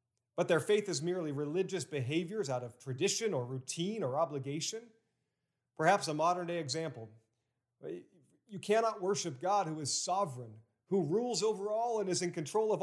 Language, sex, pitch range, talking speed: English, male, 125-190 Hz, 160 wpm